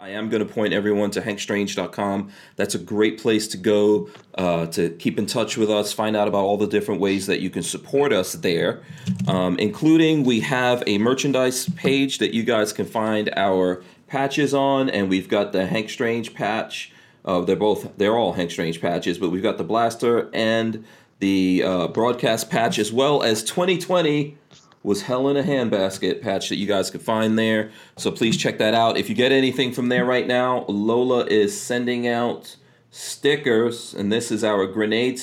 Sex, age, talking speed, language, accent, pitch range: male, 40-59, 190 wpm, English, American, 100-125 Hz